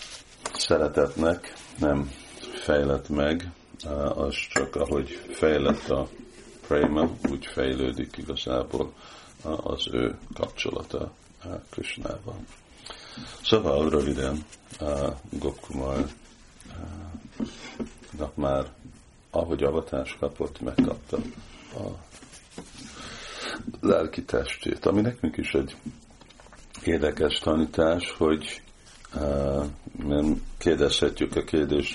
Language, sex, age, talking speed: Hungarian, male, 50-69, 75 wpm